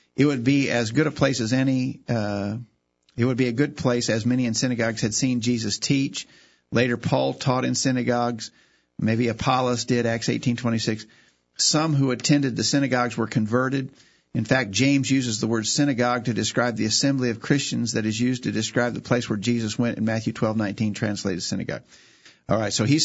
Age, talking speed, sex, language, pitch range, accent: 50-69, 200 wpm, male, English, 110-125 Hz, American